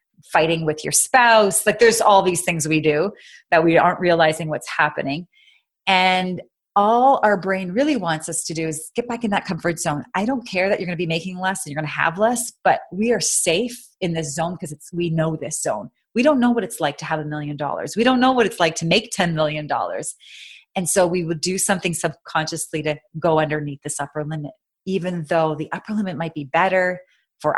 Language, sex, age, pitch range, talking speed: English, female, 30-49, 155-195 Hz, 230 wpm